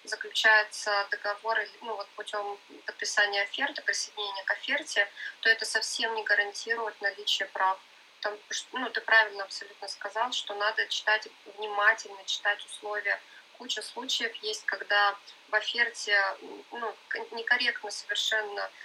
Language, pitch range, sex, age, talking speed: Russian, 205-240 Hz, female, 20-39, 120 wpm